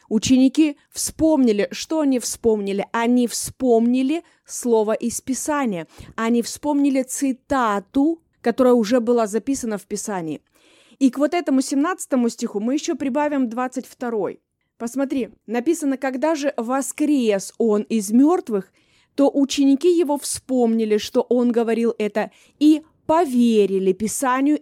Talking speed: 120 wpm